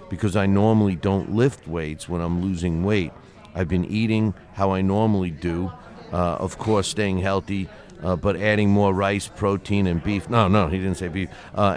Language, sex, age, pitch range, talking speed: English, male, 50-69, 90-105 Hz, 190 wpm